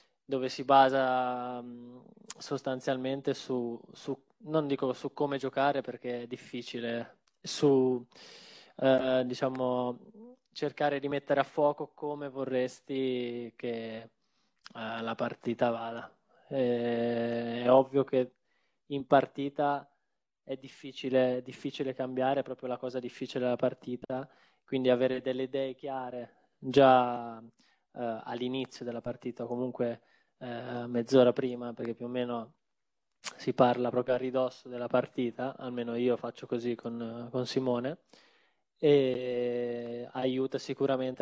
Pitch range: 120-135 Hz